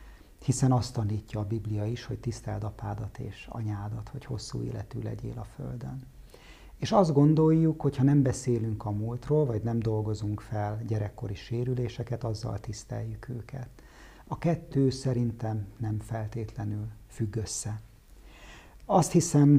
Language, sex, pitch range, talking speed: Hungarian, male, 105-125 Hz, 130 wpm